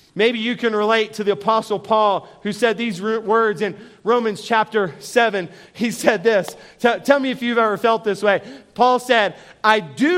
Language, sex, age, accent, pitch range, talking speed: English, male, 40-59, American, 215-260 Hz, 190 wpm